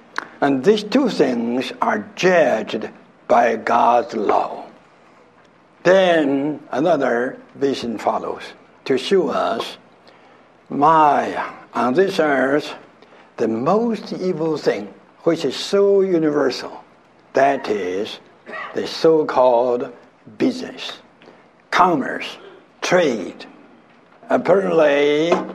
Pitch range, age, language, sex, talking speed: 140-200 Hz, 60-79, English, male, 85 wpm